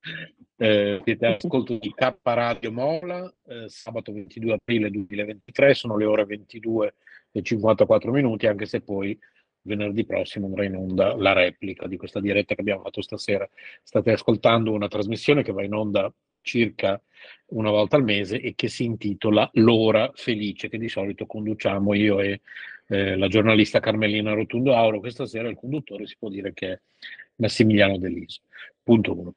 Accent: native